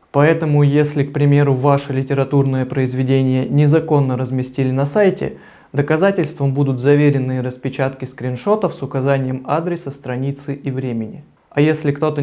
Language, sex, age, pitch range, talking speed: Russian, male, 20-39, 135-155 Hz, 125 wpm